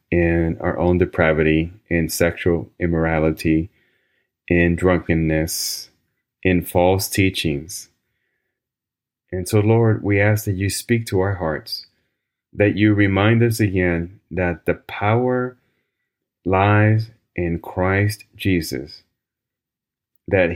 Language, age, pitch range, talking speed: English, 30-49, 85-105 Hz, 105 wpm